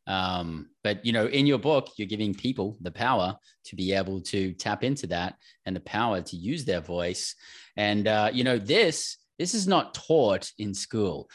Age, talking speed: 20-39, 195 wpm